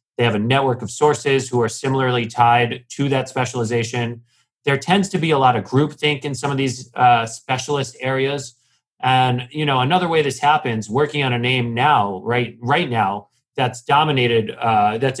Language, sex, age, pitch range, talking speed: English, male, 30-49, 115-140 Hz, 185 wpm